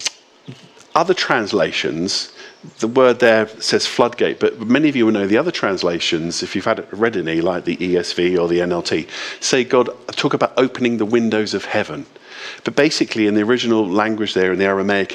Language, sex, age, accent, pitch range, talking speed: English, male, 50-69, British, 110-145 Hz, 180 wpm